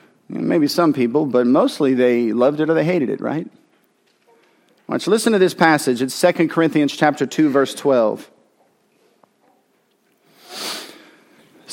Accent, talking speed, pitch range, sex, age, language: American, 140 wpm, 140-185 Hz, male, 40-59, English